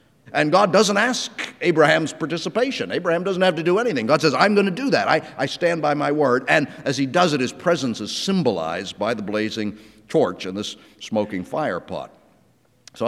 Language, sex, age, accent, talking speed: English, male, 60-79, American, 200 wpm